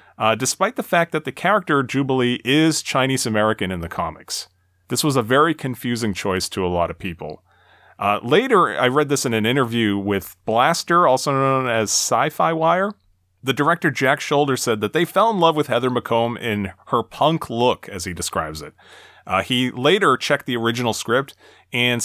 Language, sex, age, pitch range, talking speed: English, male, 30-49, 100-135 Hz, 185 wpm